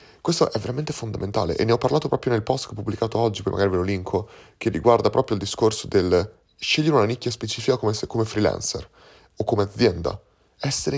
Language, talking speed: Italian, 200 wpm